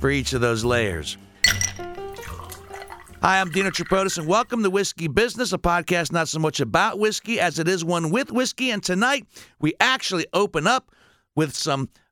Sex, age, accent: male, 60-79, American